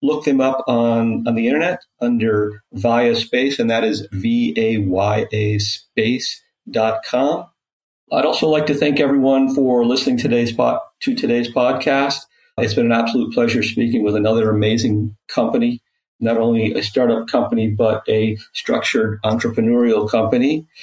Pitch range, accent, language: 105-145 Hz, American, English